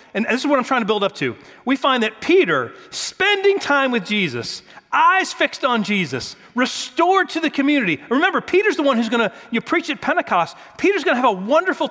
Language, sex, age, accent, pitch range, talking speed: English, male, 40-59, American, 165-275 Hz, 205 wpm